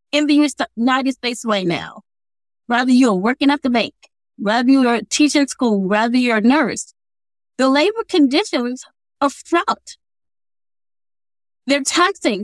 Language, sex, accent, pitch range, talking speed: English, female, American, 205-275 Hz, 130 wpm